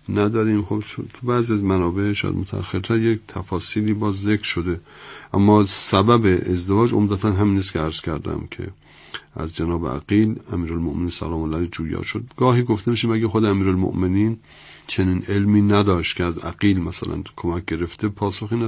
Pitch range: 85-105 Hz